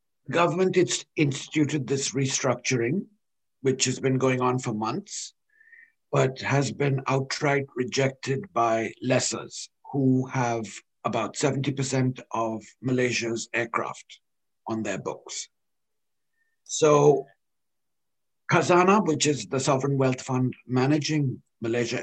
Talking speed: 105 wpm